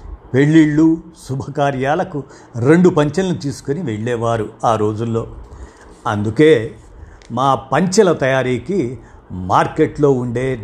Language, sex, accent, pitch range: Telugu, male, native, 115-155 Hz